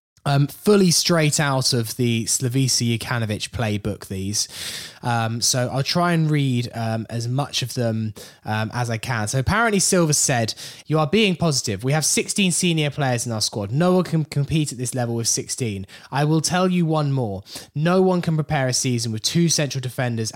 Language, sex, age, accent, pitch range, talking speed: English, male, 10-29, British, 120-155 Hz, 195 wpm